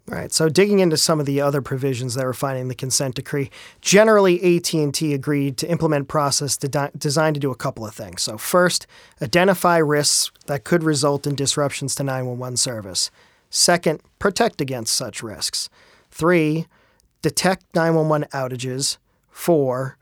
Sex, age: male, 40-59